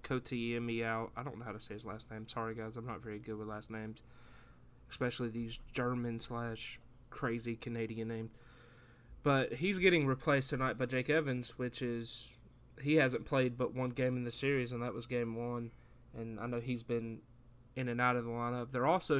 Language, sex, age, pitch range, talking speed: English, male, 20-39, 120-140 Hz, 200 wpm